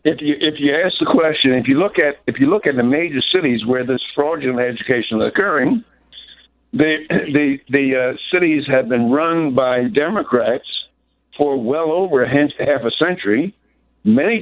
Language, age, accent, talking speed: English, 60-79, American, 170 wpm